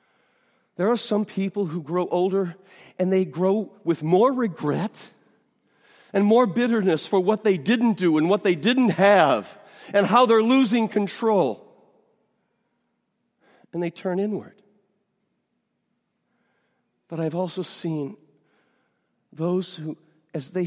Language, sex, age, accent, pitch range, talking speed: English, male, 50-69, American, 165-225 Hz, 125 wpm